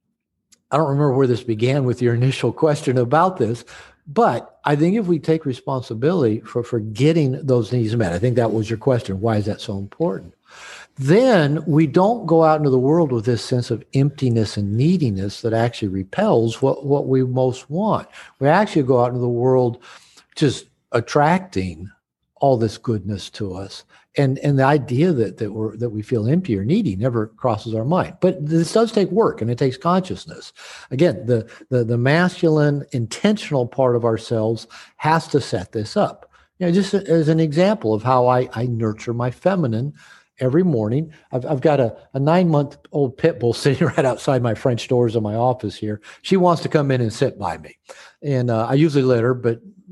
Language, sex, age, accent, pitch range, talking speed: English, male, 60-79, American, 115-155 Hz, 195 wpm